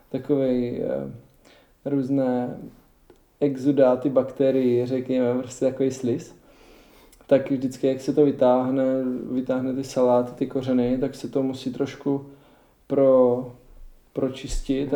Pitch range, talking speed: 130-145 Hz, 110 wpm